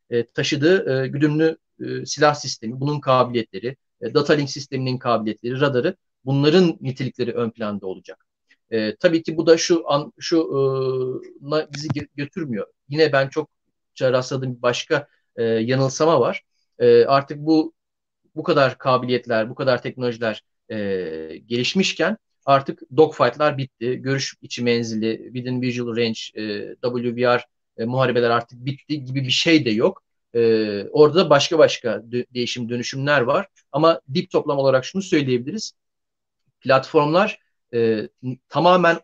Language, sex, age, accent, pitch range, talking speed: Turkish, male, 30-49, native, 120-155 Hz, 135 wpm